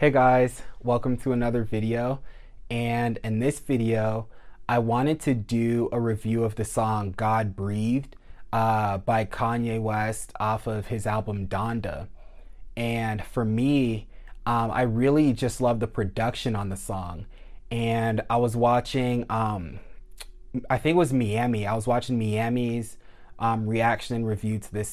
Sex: male